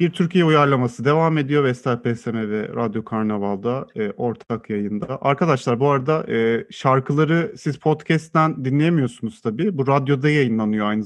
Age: 40-59